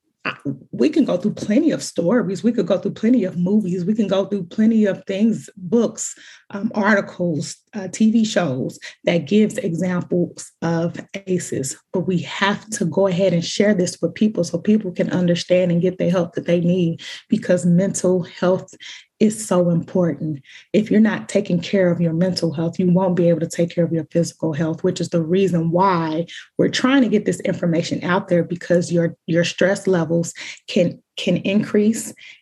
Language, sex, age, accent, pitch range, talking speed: English, female, 20-39, American, 170-205 Hz, 185 wpm